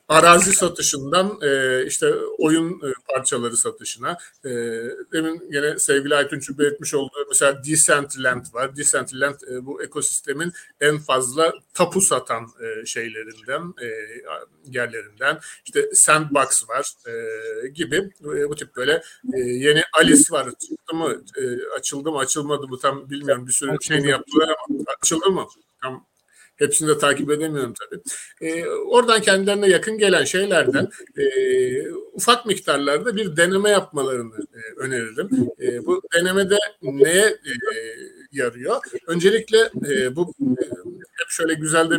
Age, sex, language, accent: 50-69, male, Turkish, native